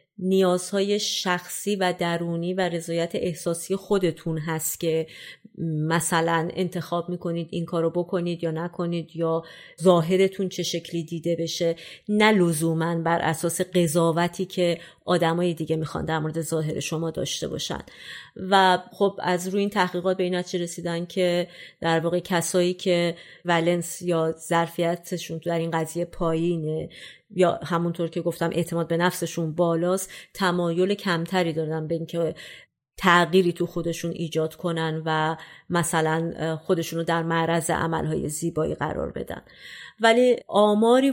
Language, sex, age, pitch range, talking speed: Persian, female, 30-49, 165-180 Hz, 135 wpm